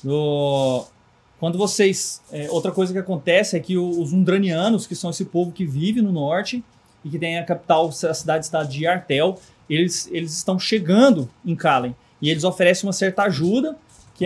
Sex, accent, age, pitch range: male, Brazilian, 20-39, 160-190 Hz